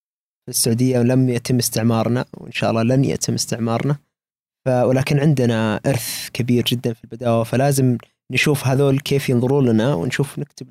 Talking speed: 145 wpm